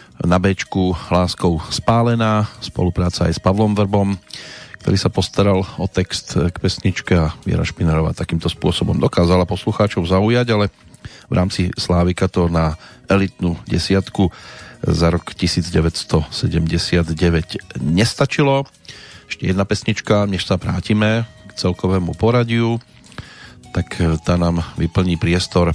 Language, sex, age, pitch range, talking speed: Slovak, male, 40-59, 85-110 Hz, 115 wpm